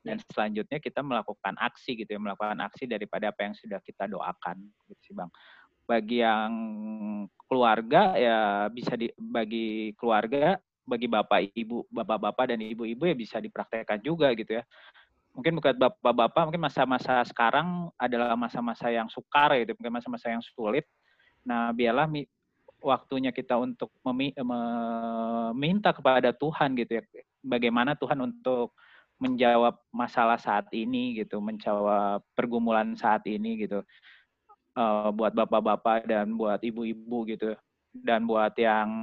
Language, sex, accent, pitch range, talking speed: Indonesian, male, native, 110-125 Hz, 130 wpm